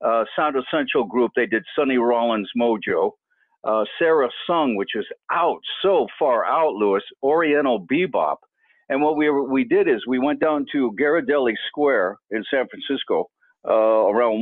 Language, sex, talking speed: English, male, 160 wpm